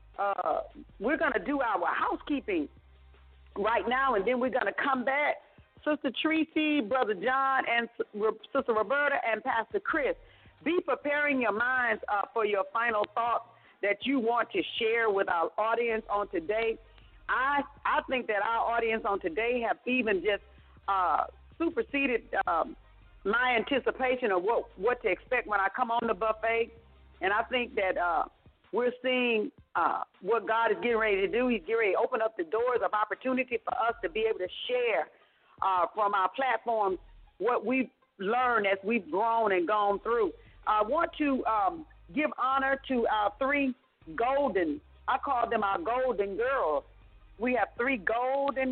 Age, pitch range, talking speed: 40-59, 210-275 Hz, 170 wpm